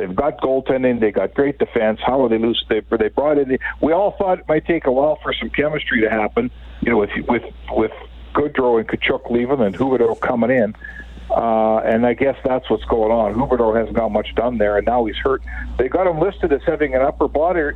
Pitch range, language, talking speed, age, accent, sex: 110-160 Hz, English, 235 wpm, 60-79, American, male